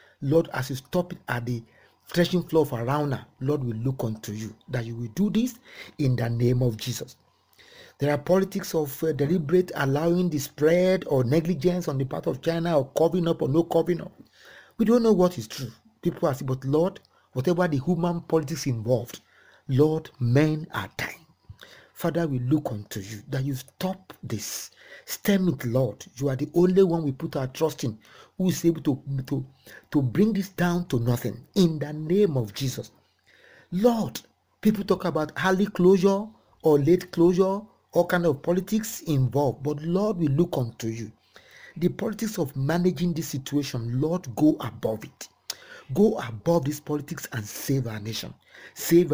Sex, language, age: male, English, 50-69